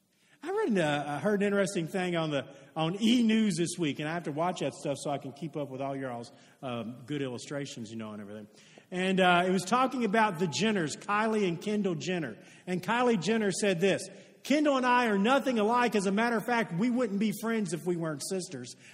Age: 50-69